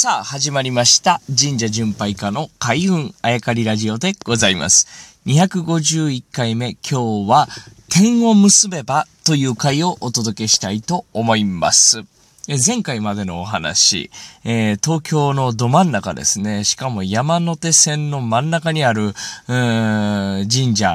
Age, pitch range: 20-39, 110-155 Hz